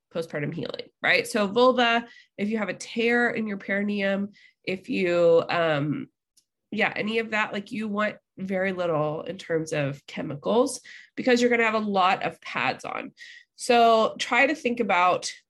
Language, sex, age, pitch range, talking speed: English, female, 20-39, 180-240 Hz, 170 wpm